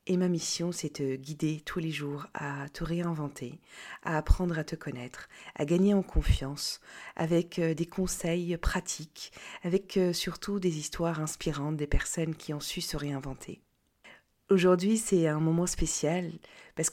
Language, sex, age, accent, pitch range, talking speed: French, female, 40-59, French, 150-180 Hz, 150 wpm